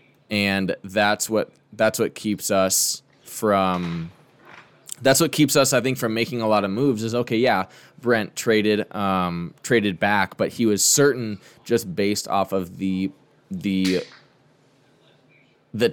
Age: 20-39